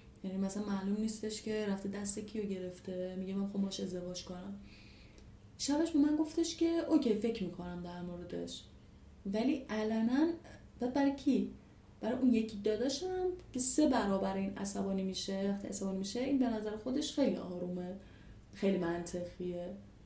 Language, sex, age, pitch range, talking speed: Persian, female, 30-49, 200-260 Hz, 140 wpm